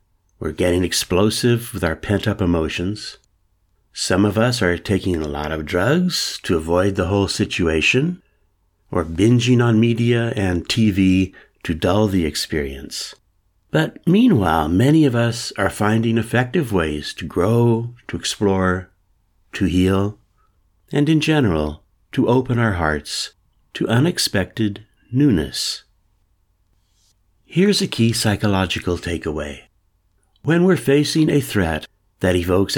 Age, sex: 60-79, male